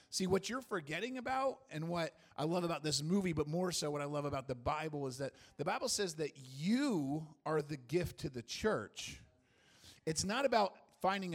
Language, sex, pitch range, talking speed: English, male, 150-200 Hz, 200 wpm